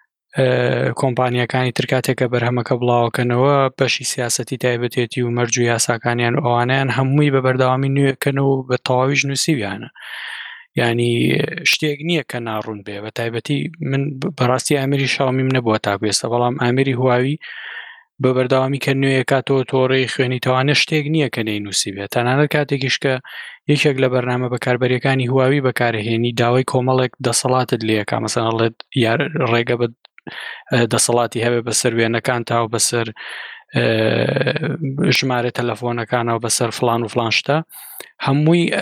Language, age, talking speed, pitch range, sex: Arabic, 20-39, 145 wpm, 115-135 Hz, male